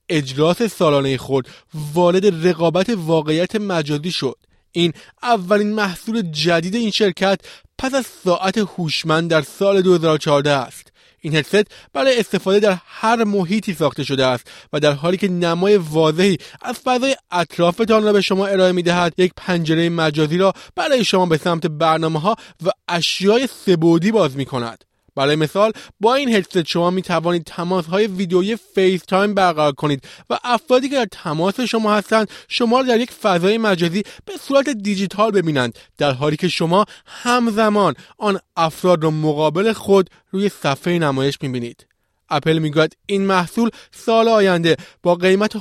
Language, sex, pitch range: Persian, male, 160-210 Hz